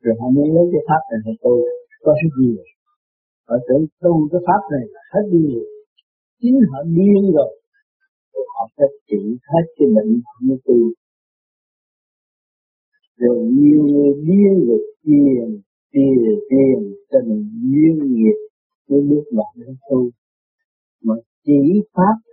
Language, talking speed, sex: Vietnamese, 125 wpm, male